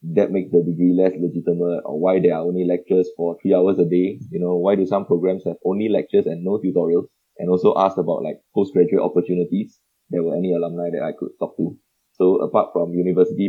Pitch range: 90-95 Hz